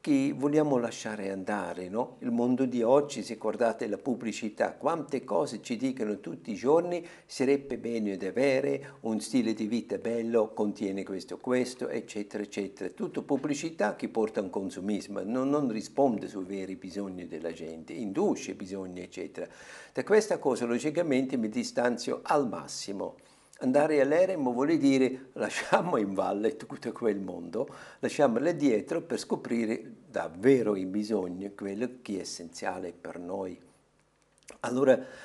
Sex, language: male, Italian